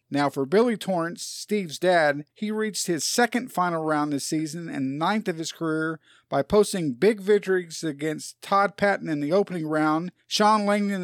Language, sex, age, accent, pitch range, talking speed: English, male, 50-69, American, 155-200 Hz, 175 wpm